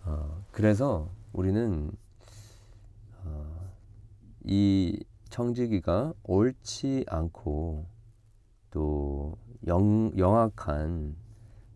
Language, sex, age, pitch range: Korean, male, 40-59, 80-110 Hz